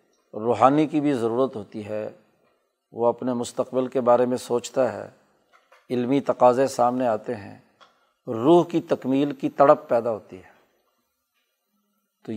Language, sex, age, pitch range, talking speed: Urdu, male, 40-59, 120-140 Hz, 135 wpm